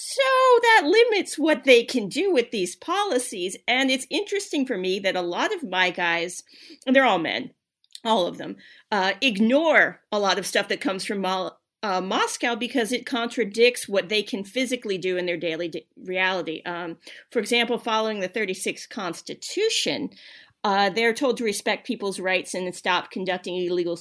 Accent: American